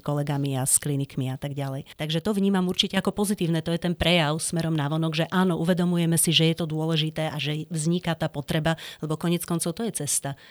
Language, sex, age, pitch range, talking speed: Slovak, female, 30-49, 150-170 Hz, 215 wpm